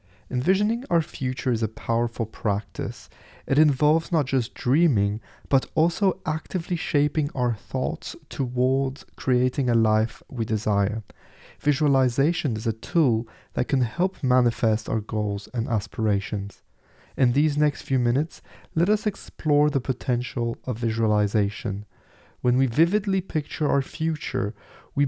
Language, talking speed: English, 130 wpm